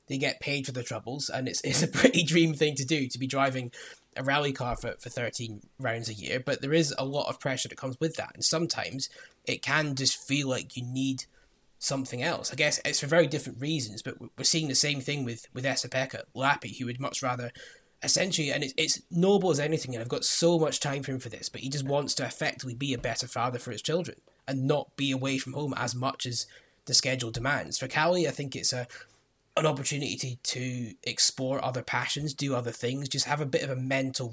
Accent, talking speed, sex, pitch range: British, 235 wpm, male, 125-145 Hz